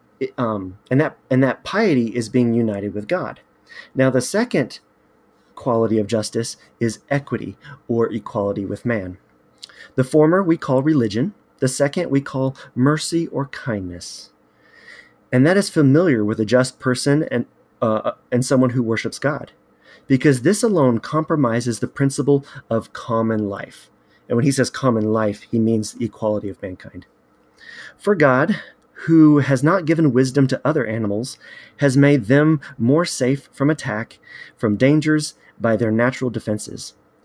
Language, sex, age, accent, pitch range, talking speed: English, male, 30-49, American, 110-145 Hz, 150 wpm